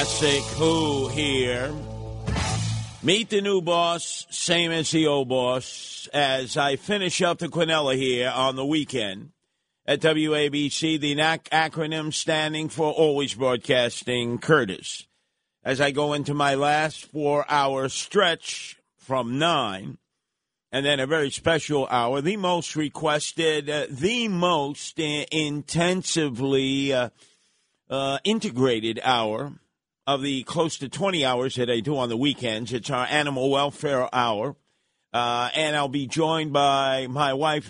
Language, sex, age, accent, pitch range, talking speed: English, male, 50-69, American, 130-160 Hz, 130 wpm